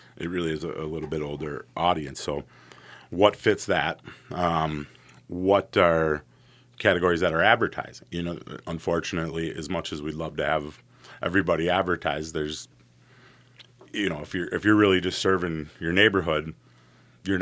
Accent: American